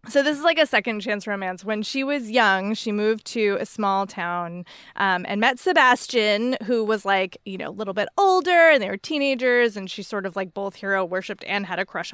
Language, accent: English, American